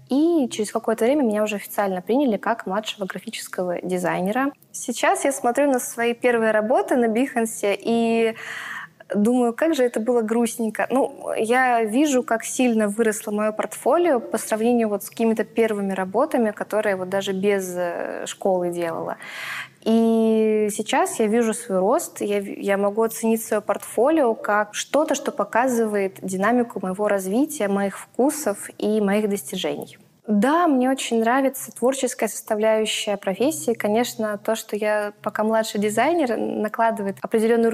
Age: 20-39